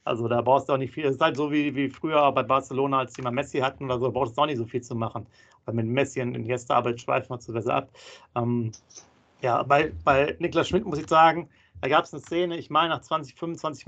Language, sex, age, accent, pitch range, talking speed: German, male, 40-59, German, 125-150 Hz, 270 wpm